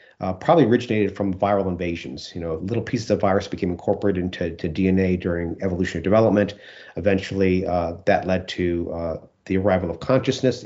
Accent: American